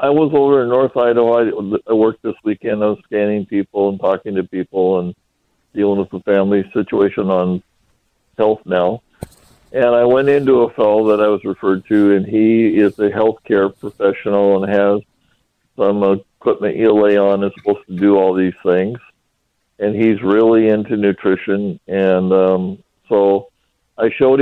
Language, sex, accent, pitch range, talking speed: English, male, American, 100-125 Hz, 170 wpm